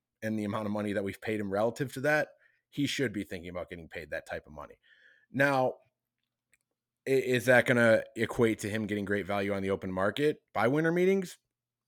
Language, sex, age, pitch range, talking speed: English, male, 20-39, 105-145 Hz, 205 wpm